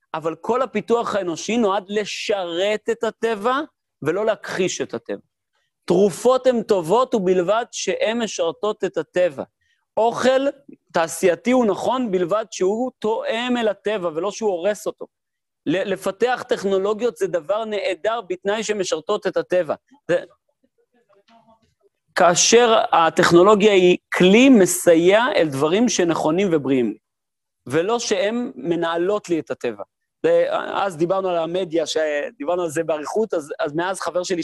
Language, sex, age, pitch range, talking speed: Hebrew, male, 40-59, 175-225 Hz, 125 wpm